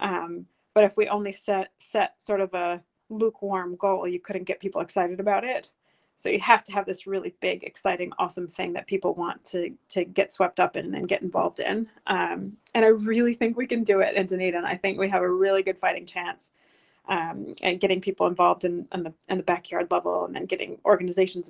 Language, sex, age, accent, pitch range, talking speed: English, female, 30-49, American, 180-205 Hz, 220 wpm